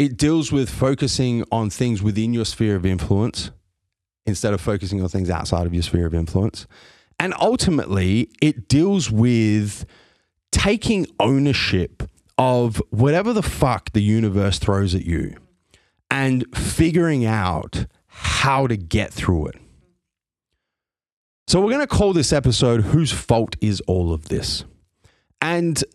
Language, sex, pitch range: English, male, 95-125 Hz